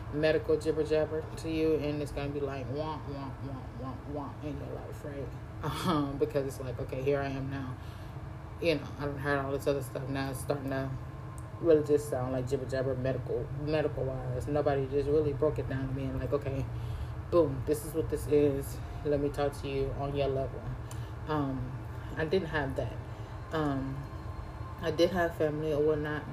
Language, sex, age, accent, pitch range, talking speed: English, female, 20-39, American, 120-145 Hz, 200 wpm